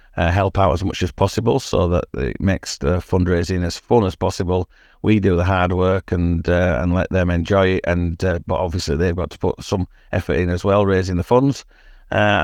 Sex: male